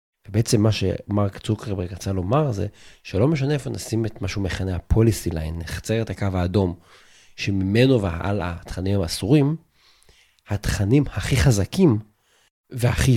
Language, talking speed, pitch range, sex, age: Hebrew, 130 wpm, 95-125 Hz, male, 30-49